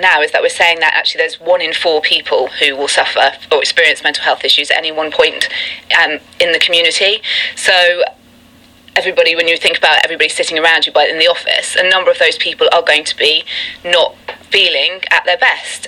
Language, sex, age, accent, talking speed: English, female, 30-49, British, 210 wpm